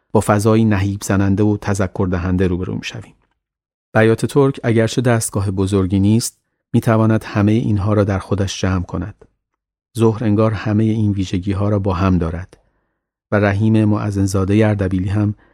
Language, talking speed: Persian, 155 wpm